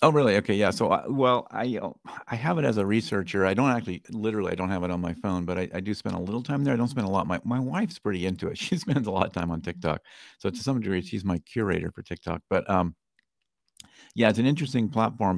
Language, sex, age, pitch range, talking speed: English, male, 50-69, 85-110 Hz, 275 wpm